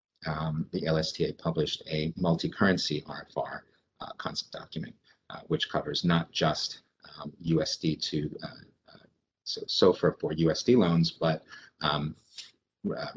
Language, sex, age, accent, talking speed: English, male, 30-49, American, 135 wpm